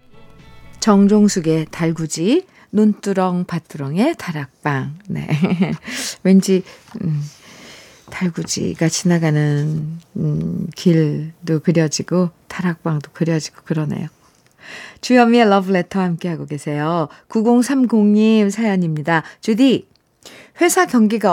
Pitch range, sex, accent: 165-235 Hz, female, native